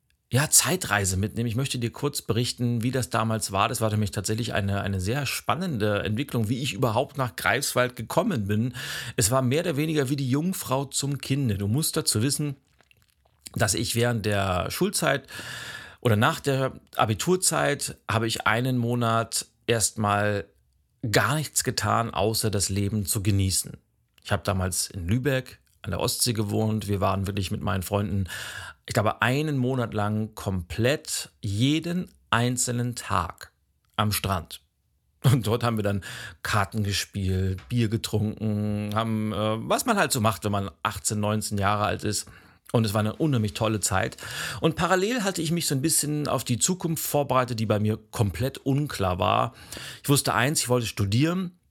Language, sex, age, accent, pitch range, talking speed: German, male, 40-59, German, 105-135 Hz, 165 wpm